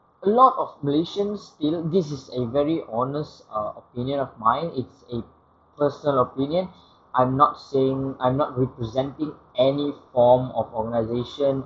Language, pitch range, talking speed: English, 130-165 Hz, 145 wpm